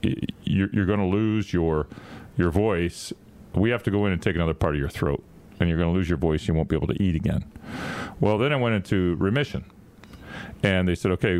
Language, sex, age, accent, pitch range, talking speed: English, male, 40-59, American, 80-100 Hz, 225 wpm